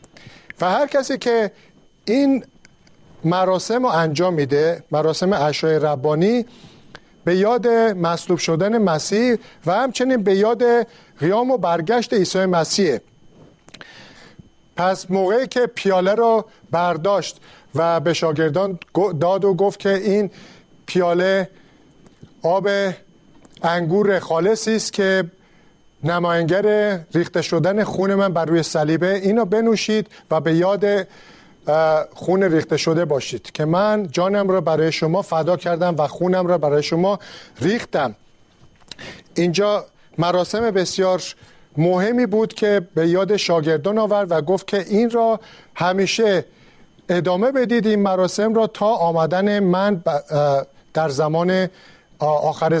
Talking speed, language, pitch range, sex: 120 wpm, Persian, 165-205 Hz, male